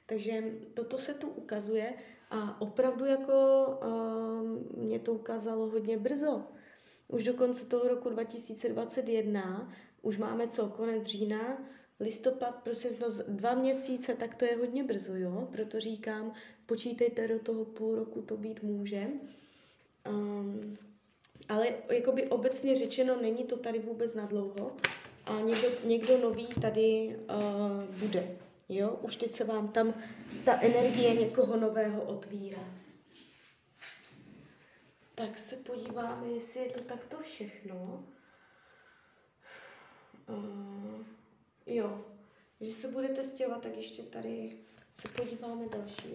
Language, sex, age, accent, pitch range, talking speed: Czech, female, 20-39, native, 215-245 Hz, 120 wpm